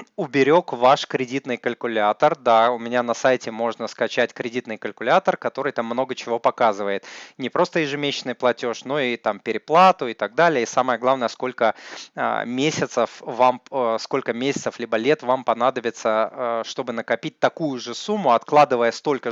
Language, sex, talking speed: Russian, male, 150 wpm